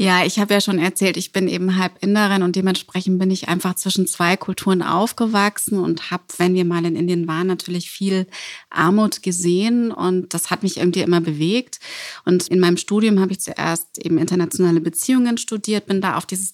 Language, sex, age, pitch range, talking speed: German, female, 30-49, 180-210 Hz, 195 wpm